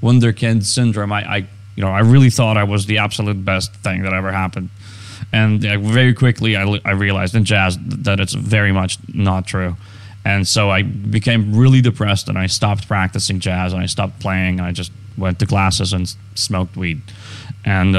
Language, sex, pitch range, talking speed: Hebrew, male, 100-115 Hz, 190 wpm